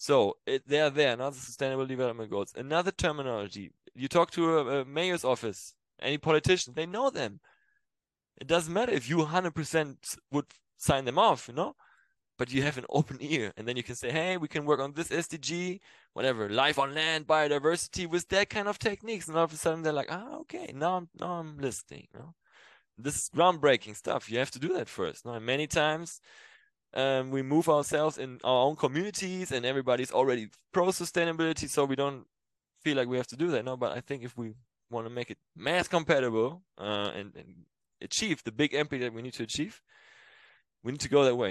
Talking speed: 210 wpm